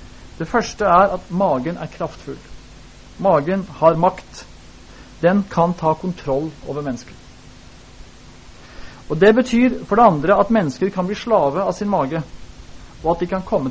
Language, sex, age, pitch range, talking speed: Danish, male, 30-49, 130-185 Hz, 155 wpm